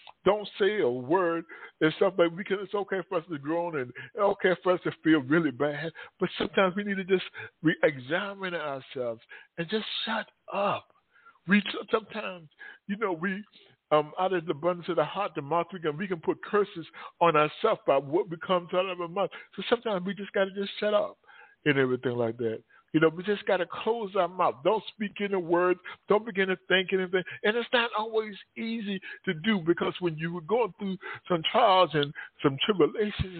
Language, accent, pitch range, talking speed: English, American, 160-200 Hz, 205 wpm